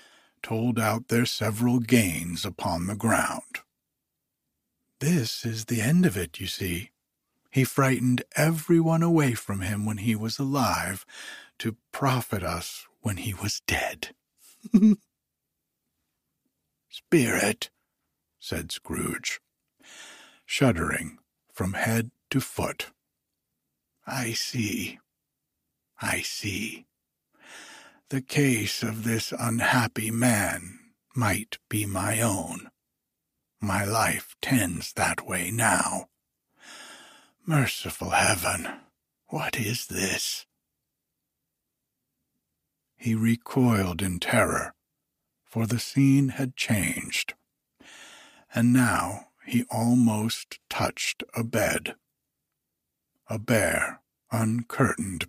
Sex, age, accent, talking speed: male, 60-79, American, 90 wpm